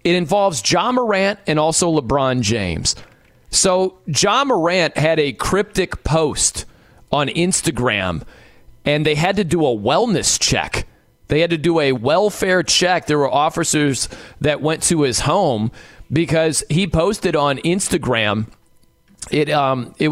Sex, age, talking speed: male, 30-49, 150 wpm